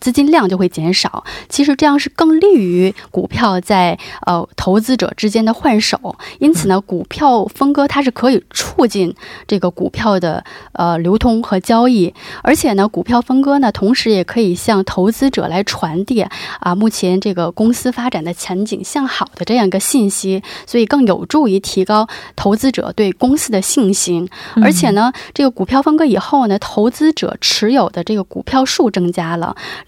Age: 20-39